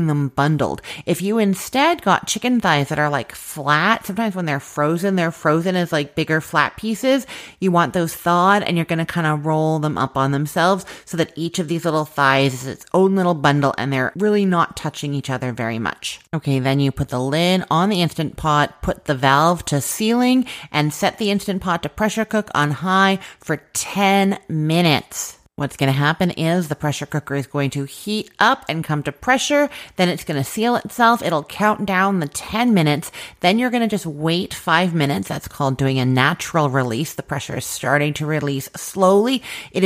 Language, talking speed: English, 210 wpm